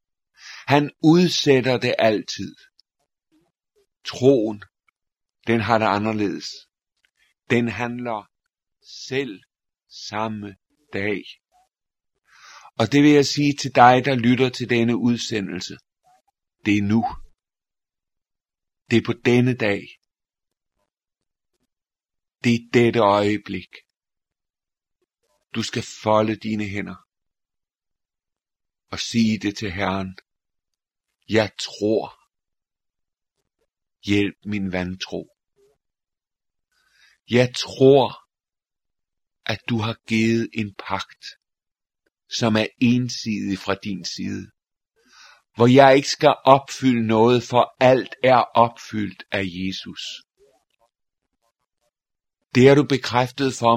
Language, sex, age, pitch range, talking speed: Danish, male, 50-69, 105-130 Hz, 95 wpm